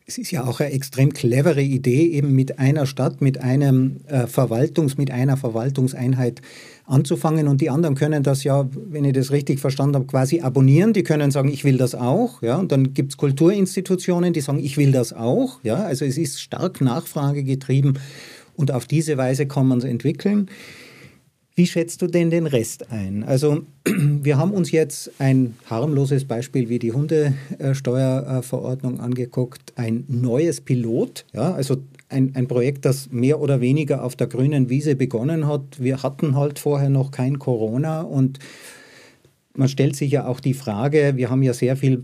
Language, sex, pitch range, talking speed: German, male, 130-150 Hz, 175 wpm